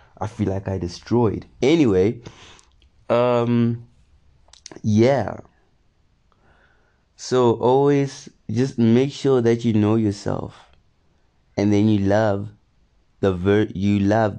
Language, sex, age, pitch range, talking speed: English, male, 30-49, 90-120 Hz, 105 wpm